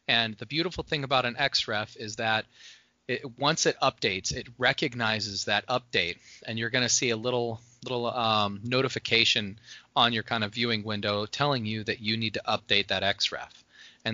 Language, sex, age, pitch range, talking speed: English, male, 20-39, 105-125 Hz, 185 wpm